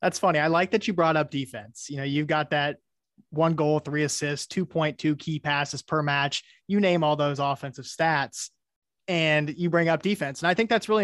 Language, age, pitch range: English, 20-39, 140-165 Hz